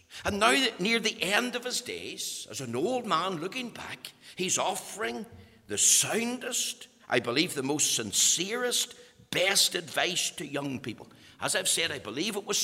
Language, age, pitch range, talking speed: English, 60-79, 120-195 Hz, 165 wpm